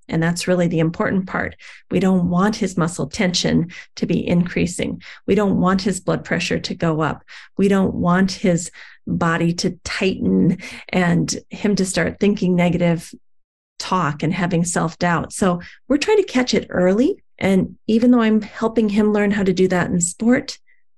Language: English